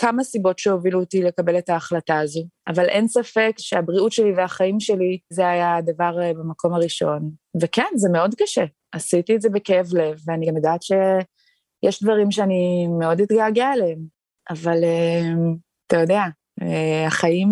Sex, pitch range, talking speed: female, 170-210 Hz, 150 wpm